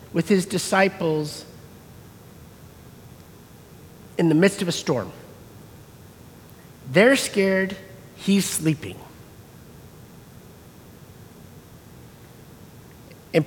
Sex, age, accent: male, 50-69, American